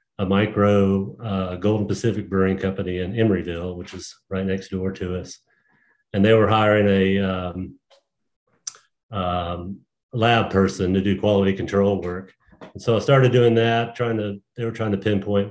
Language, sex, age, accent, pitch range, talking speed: English, male, 40-59, American, 90-105 Hz, 165 wpm